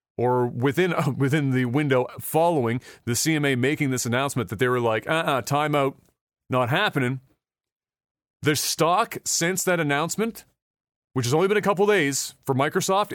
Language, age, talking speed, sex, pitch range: English, 30-49, 155 wpm, male, 135-170 Hz